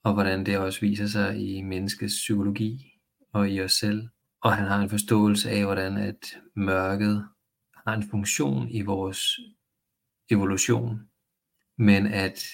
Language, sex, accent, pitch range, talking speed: Danish, male, native, 100-110 Hz, 145 wpm